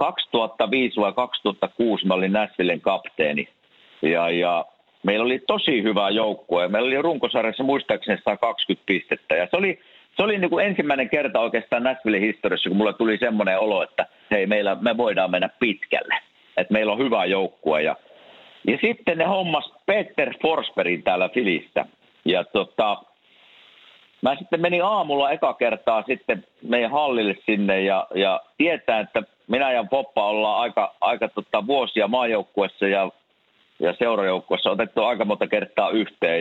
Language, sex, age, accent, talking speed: Finnish, male, 50-69, native, 145 wpm